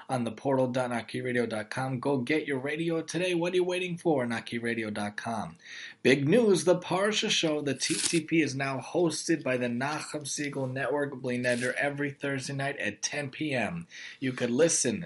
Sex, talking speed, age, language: male, 155 wpm, 30-49, English